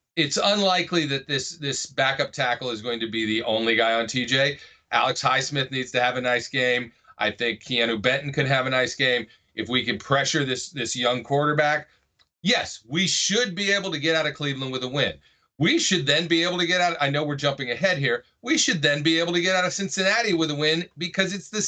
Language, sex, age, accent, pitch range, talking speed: English, male, 40-59, American, 120-165 Hz, 235 wpm